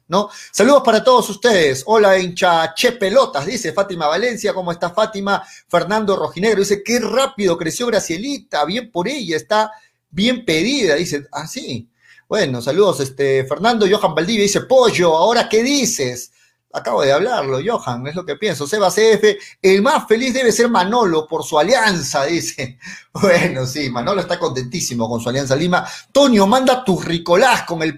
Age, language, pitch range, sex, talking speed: 40-59, Spanish, 150-215 Hz, male, 165 wpm